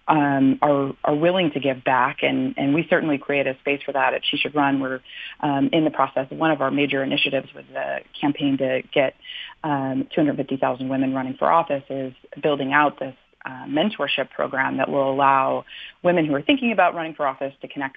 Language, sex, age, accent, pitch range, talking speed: English, female, 30-49, American, 135-170 Hz, 205 wpm